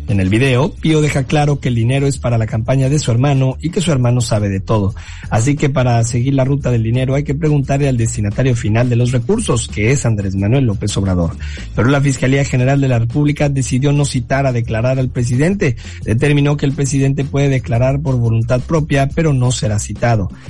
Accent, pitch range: Mexican, 110-140 Hz